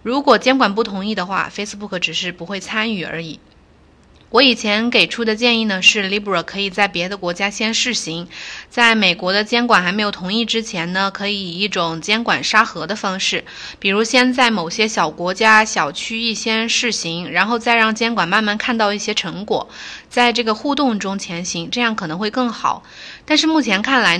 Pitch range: 180-230 Hz